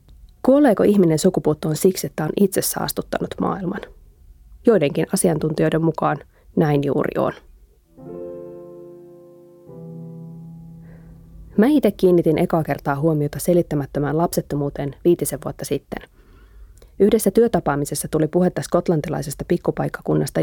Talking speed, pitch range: 95 wpm, 140-175 Hz